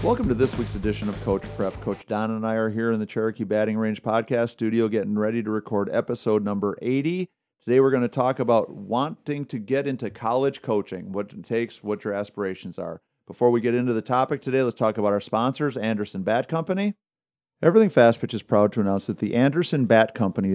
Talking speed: 215 wpm